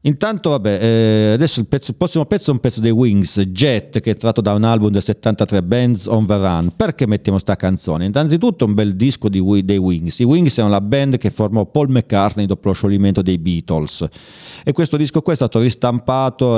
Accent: Italian